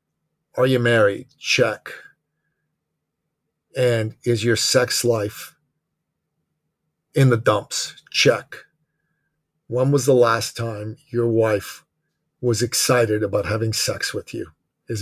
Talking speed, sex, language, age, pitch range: 110 wpm, male, English, 40-59, 110-135 Hz